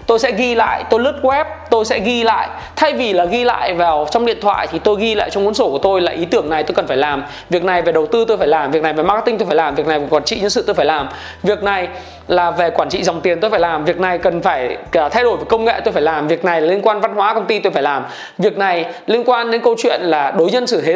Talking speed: 310 wpm